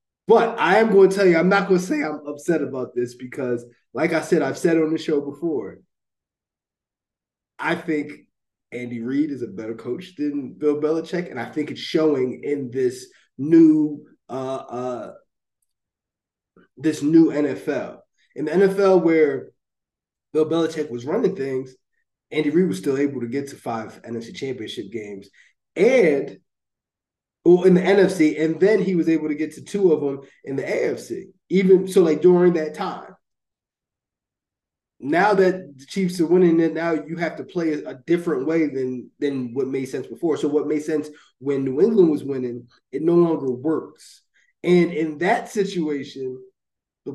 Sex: male